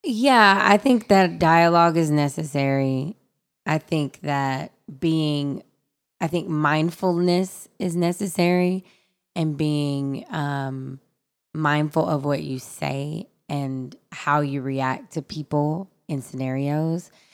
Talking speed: 110 wpm